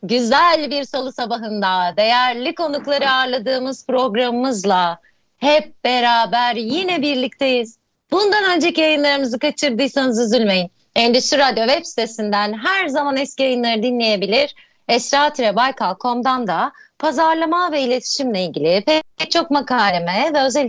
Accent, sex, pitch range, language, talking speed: native, female, 215-285 Hz, Turkish, 105 wpm